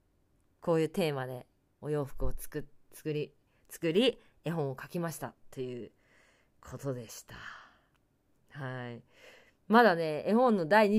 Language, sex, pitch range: Japanese, female, 135-210 Hz